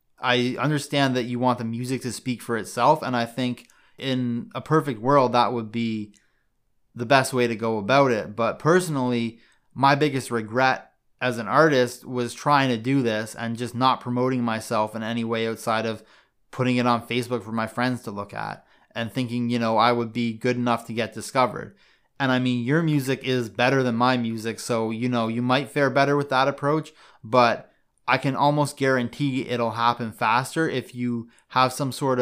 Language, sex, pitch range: English, male, 115-135 Hz